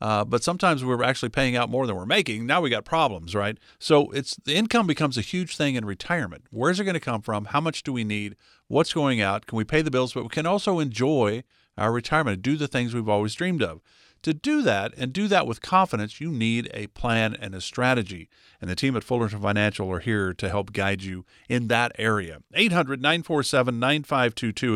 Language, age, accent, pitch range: English, 50-69, American, 105-145 Hz